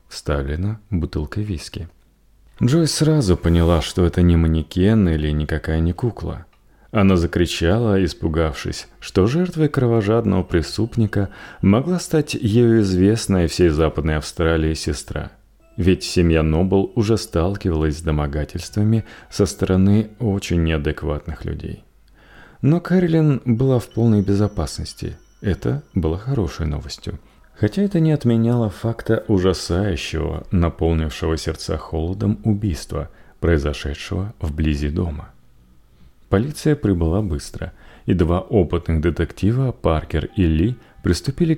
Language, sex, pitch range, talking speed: Russian, male, 80-110 Hz, 110 wpm